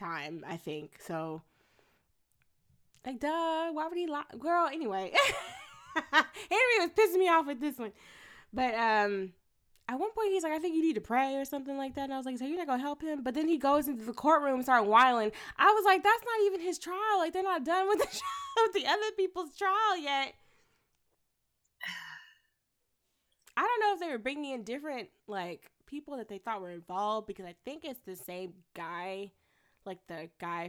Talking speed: 200 wpm